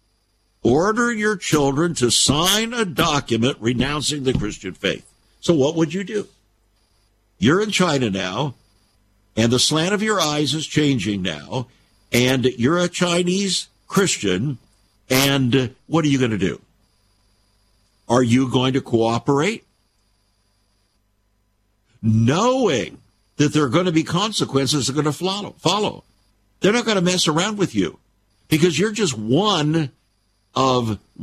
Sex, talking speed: male, 140 wpm